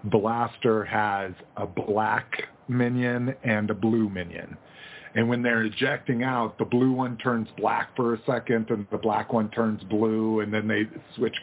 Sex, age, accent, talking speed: male, 40-59, American, 170 wpm